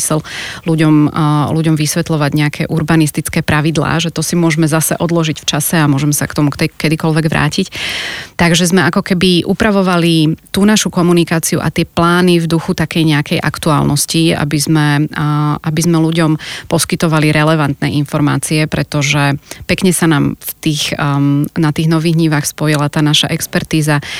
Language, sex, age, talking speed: Slovak, female, 30-49, 145 wpm